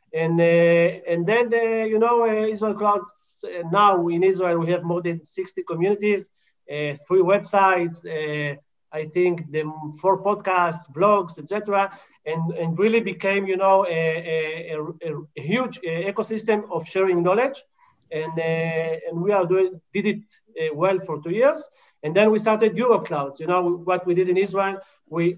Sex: male